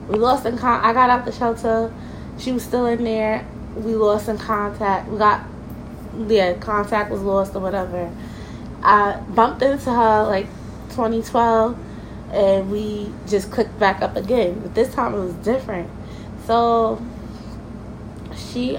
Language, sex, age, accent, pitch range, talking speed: English, female, 20-39, American, 205-245 Hz, 150 wpm